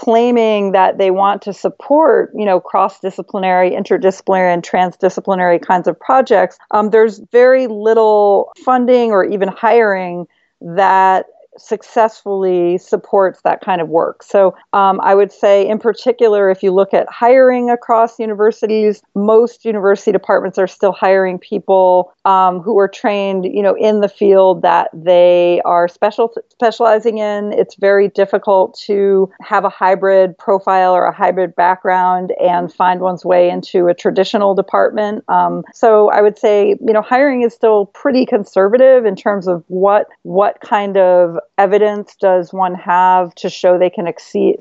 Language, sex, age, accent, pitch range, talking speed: English, female, 40-59, American, 185-220 Hz, 155 wpm